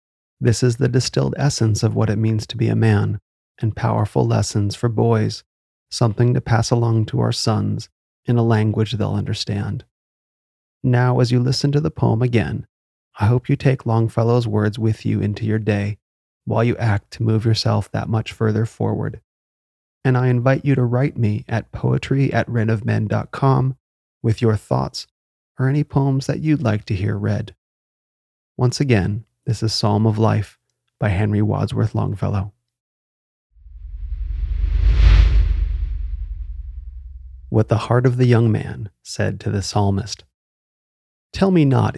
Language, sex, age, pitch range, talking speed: English, male, 30-49, 100-120 Hz, 155 wpm